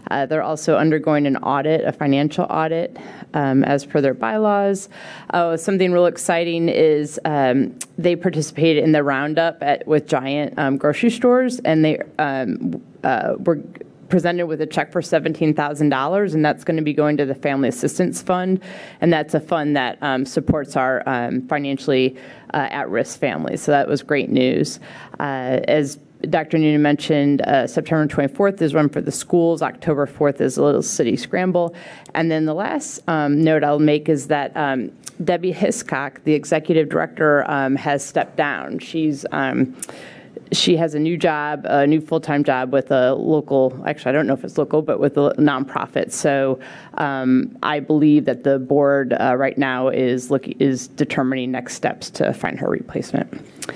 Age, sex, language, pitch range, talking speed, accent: 30-49, female, English, 140-165 Hz, 175 wpm, American